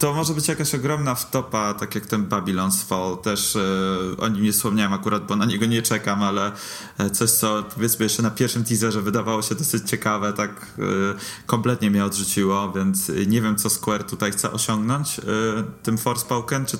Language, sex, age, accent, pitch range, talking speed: Polish, male, 20-39, native, 105-125 Hz, 190 wpm